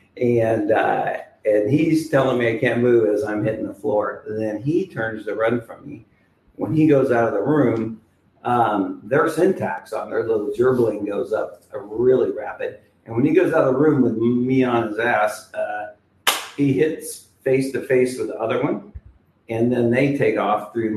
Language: English